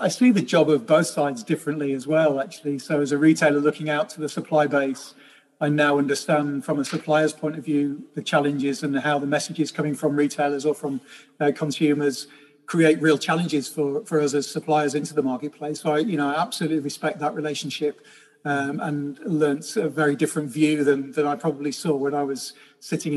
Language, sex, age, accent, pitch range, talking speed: English, male, 40-59, British, 145-160 Hz, 205 wpm